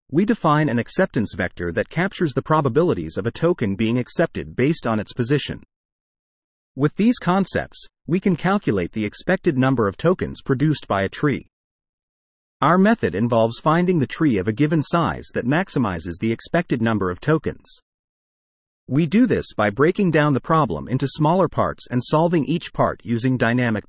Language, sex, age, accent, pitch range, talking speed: English, male, 40-59, American, 110-165 Hz, 170 wpm